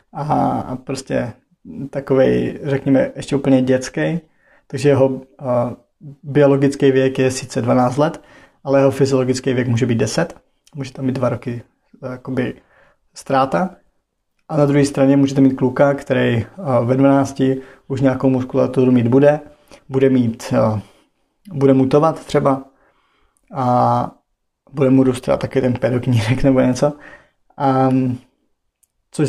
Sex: male